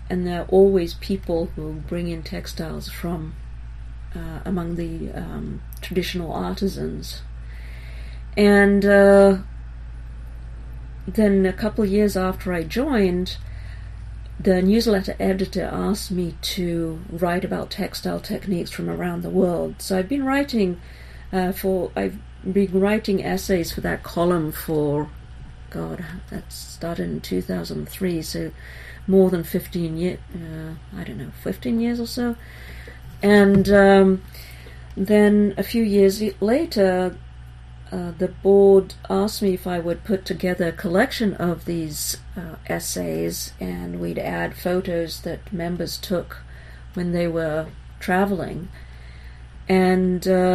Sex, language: female, English